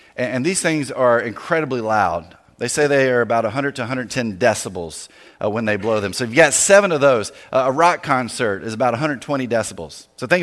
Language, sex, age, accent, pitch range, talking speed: English, male, 40-59, American, 85-135 Hz, 205 wpm